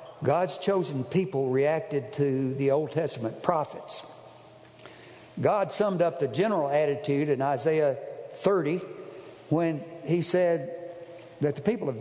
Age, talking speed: 60-79, 125 wpm